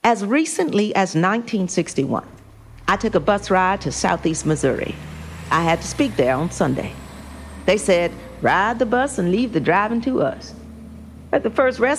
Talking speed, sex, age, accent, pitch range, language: 170 wpm, female, 50-69, American, 155-225 Hz, English